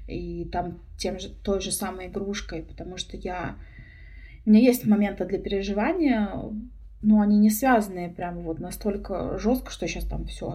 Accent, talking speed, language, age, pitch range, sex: native, 165 wpm, Russian, 20-39, 175-210 Hz, female